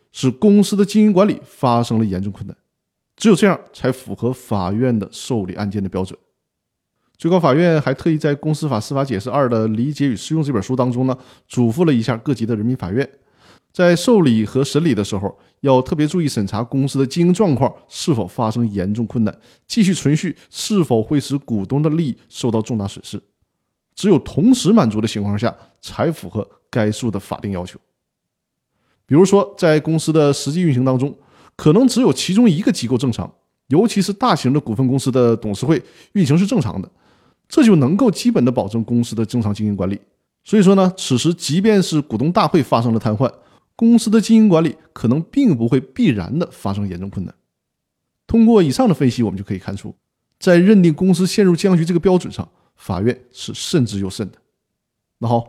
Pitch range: 110-170 Hz